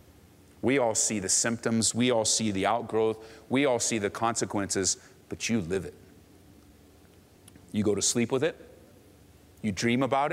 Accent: American